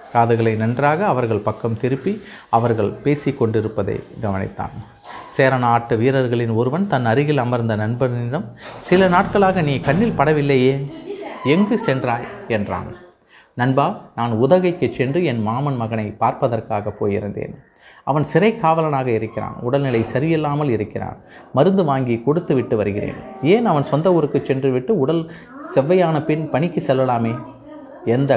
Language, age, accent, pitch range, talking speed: Tamil, 30-49, native, 115-145 Hz, 120 wpm